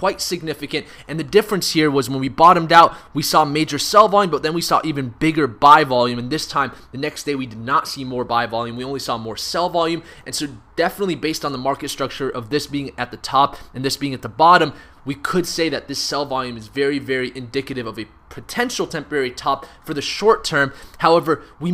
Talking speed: 235 wpm